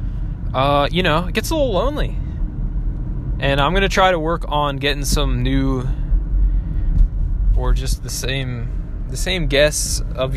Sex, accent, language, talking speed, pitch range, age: male, American, English, 150 wpm, 110-135 Hz, 20-39